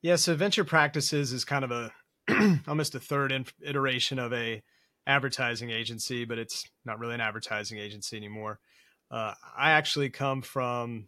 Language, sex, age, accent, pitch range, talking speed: English, male, 30-49, American, 110-135 Hz, 160 wpm